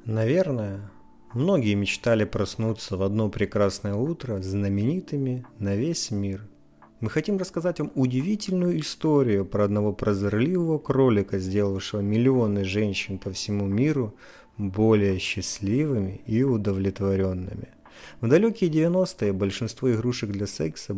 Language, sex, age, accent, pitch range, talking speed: Russian, male, 30-49, native, 100-120 Hz, 110 wpm